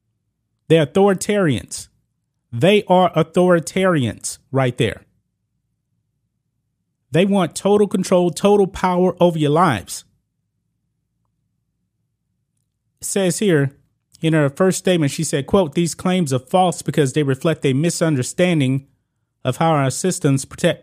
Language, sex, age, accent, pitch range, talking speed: English, male, 30-49, American, 130-160 Hz, 110 wpm